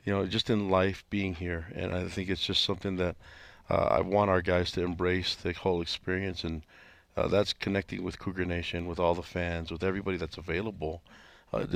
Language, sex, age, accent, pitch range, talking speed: English, male, 40-59, American, 85-95 Hz, 205 wpm